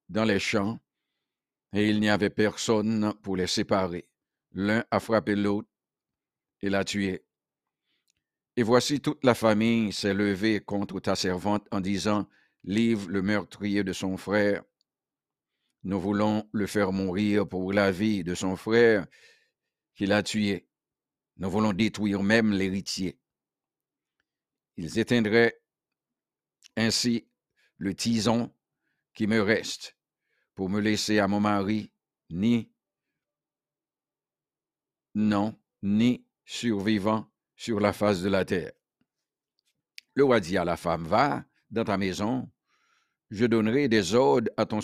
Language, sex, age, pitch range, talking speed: English, male, 50-69, 100-110 Hz, 125 wpm